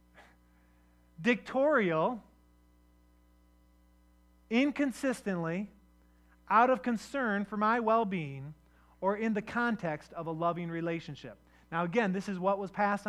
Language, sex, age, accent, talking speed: English, male, 30-49, American, 105 wpm